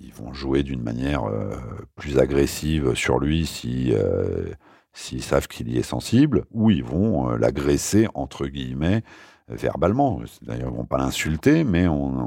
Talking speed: 170 wpm